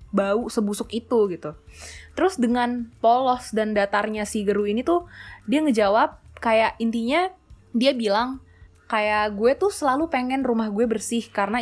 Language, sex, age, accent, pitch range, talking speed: Indonesian, female, 20-39, native, 200-245 Hz, 145 wpm